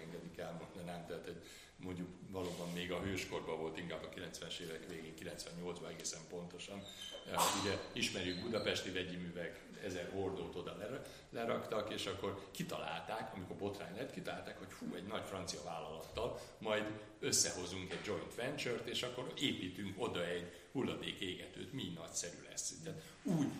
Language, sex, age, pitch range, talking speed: Hungarian, male, 60-79, 90-125 Hz, 140 wpm